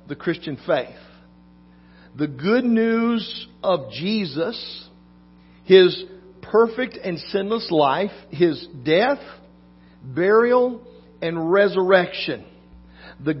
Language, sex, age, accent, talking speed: English, male, 50-69, American, 85 wpm